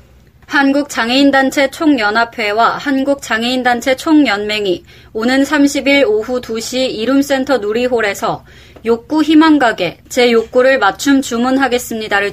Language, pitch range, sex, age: Korean, 215-270 Hz, female, 20-39